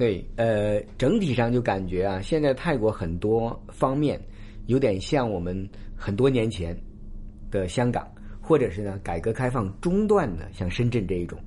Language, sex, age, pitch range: Chinese, male, 50-69, 100-125 Hz